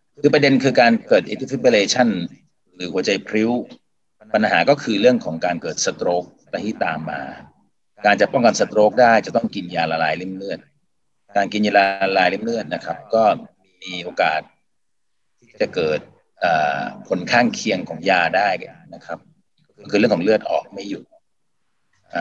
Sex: male